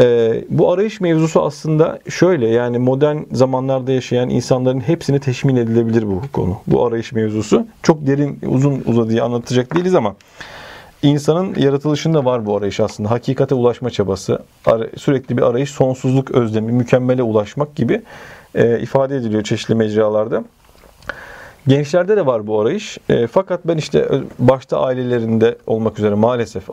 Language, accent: Turkish, native